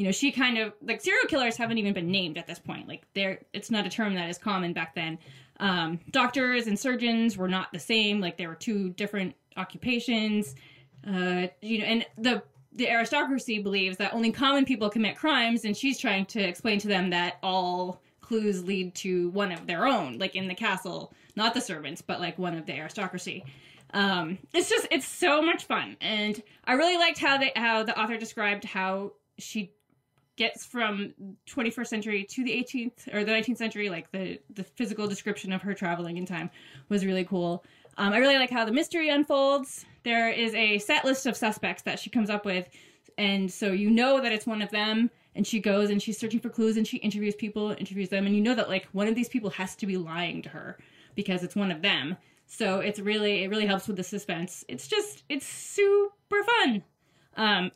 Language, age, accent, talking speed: English, 20-39, American, 210 wpm